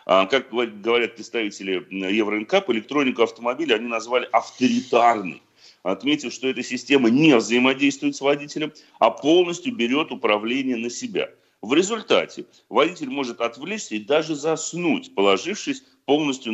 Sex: male